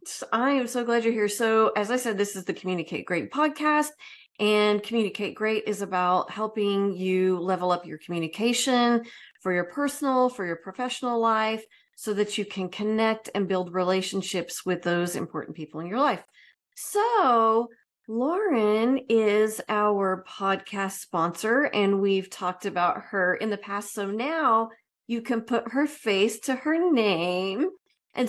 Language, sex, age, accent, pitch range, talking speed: English, female, 30-49, American, 195-240 Hz, 155 wpm